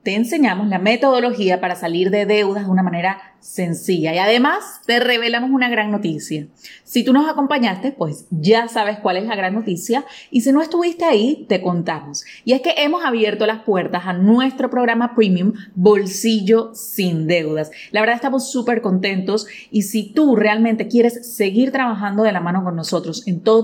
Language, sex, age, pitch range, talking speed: Spanish, female, 30-49, 185-240 Hz, 180 wpm